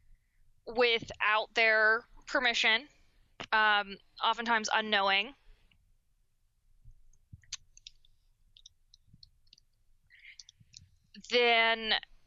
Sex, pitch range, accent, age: female, 195-240 Hz, American, 20-39